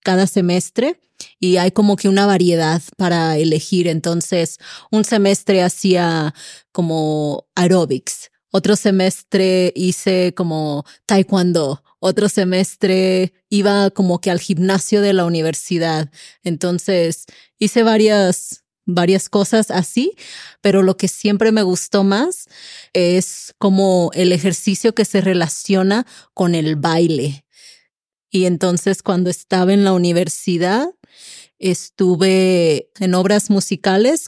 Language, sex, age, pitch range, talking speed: English, female, 30-49, 170-195 Hz, 115 wpm